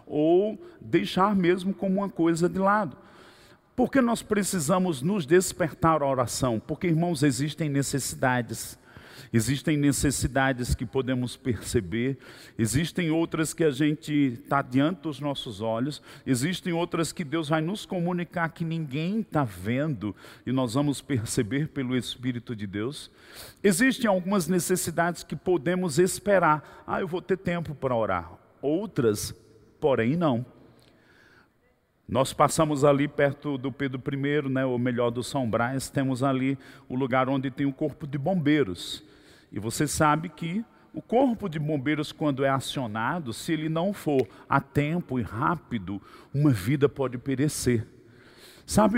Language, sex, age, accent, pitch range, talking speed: Portuguese, male, 50-69, Brazilian, 130-175 Hz, 145 wpm